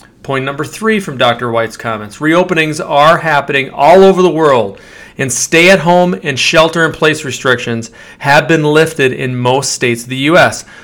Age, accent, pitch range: 40-59, American, 125-170 Hz